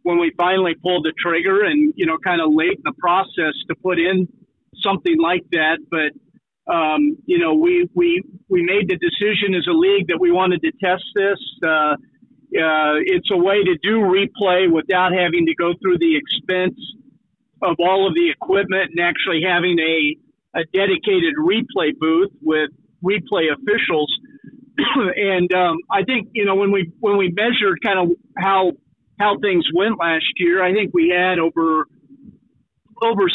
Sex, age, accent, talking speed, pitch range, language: male, 50-69, American, 175 wpm, 175-230 Hz, English